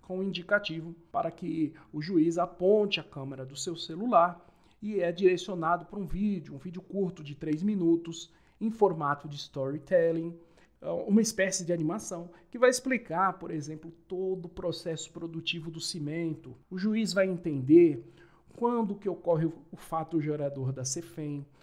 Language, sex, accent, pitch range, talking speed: Portuguese, male, Brazilian, 150-190 Hz, 155 wpm